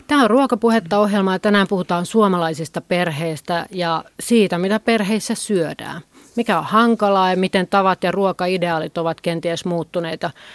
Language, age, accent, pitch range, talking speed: Finnish, 30-49, native, 170-205 Hz, 135 wpm